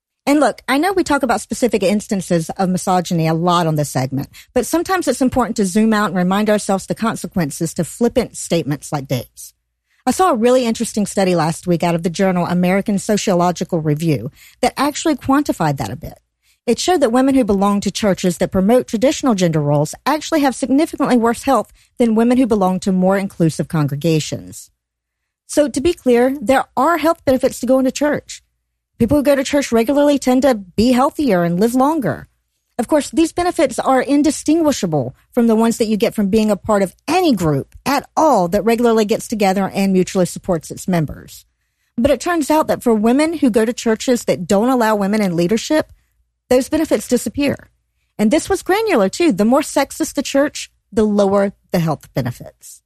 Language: English